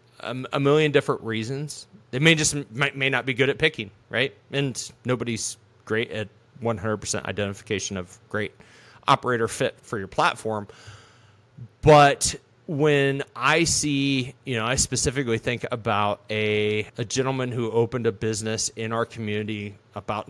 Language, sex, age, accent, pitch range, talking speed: English, male, 30-49, American, 110-135 Hz, 145 wpm